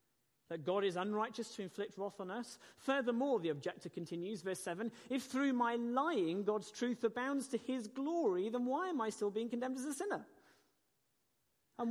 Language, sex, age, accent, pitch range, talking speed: English, male, 40-59, British, 195-275 Hz, 180 wpm